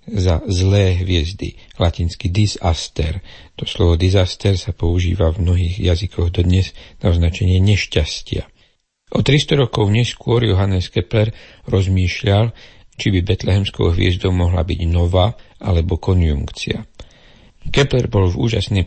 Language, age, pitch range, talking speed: Slovak, 60-79, 85-105 Hz, 120 wpm